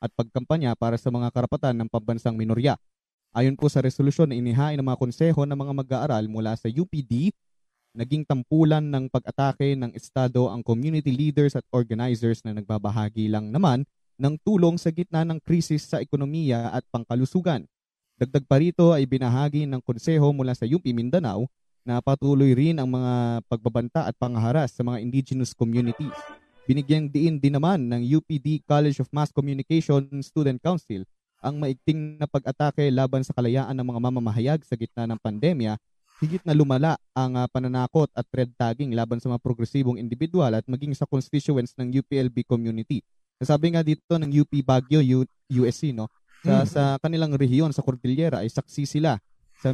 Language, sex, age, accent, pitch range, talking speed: English, male, 20-39, Filipino, 120-150 Hz, 165 wpm